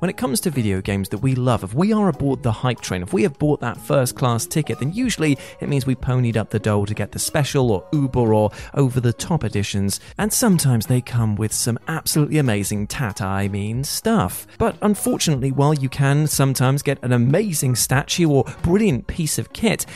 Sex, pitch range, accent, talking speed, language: male, 110-155 Hz, British, 205 wpm, English